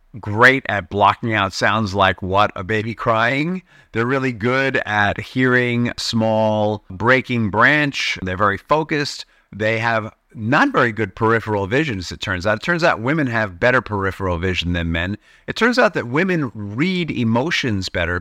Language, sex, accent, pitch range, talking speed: English, male, American, 100-130 Hz, 160 wpm